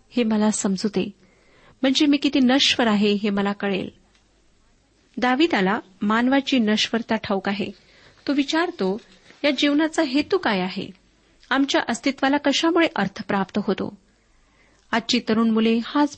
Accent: native